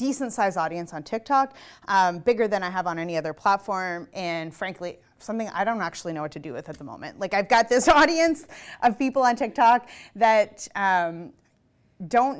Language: English